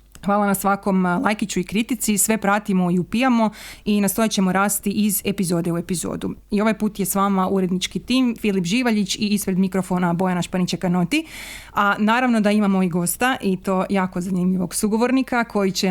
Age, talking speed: 20-39, 175 wpm